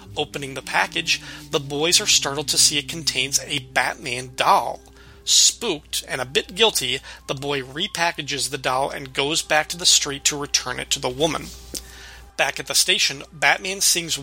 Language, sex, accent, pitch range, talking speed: English, male, American, 135-170 Hz, 175 wpm